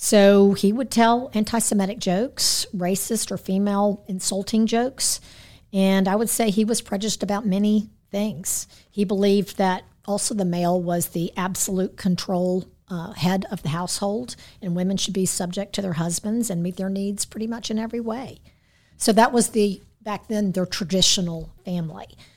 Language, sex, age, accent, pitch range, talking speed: English, female, 50-69, American, 180-215 Hz, 165 wpm